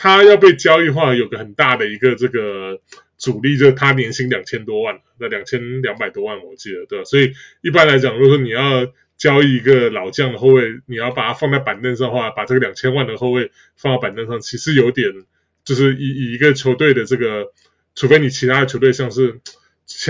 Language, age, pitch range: Chinese, 20-39, 125-140 Hz